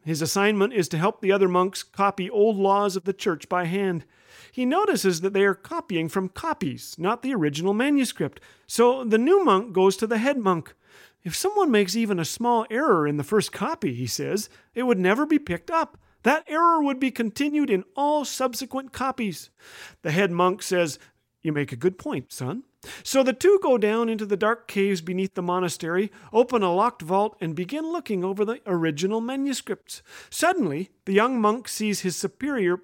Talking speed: 190 wpm